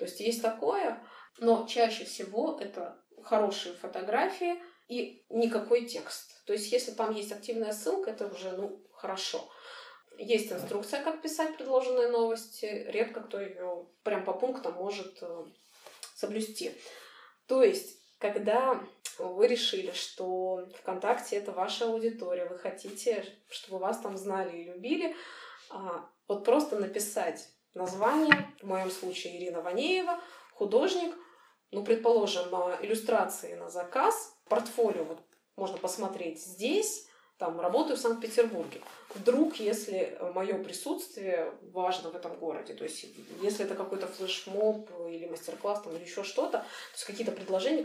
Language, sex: Russian, female